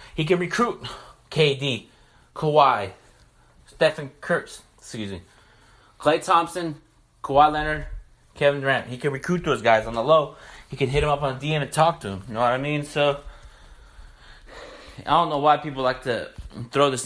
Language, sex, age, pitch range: English, male, 20-39, 130-170 Hz